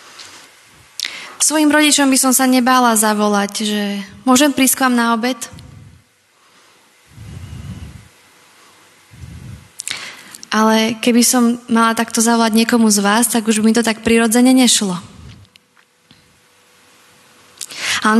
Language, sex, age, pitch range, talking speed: Slovak, female, 20-39, 210-240 Hz, 105 wpm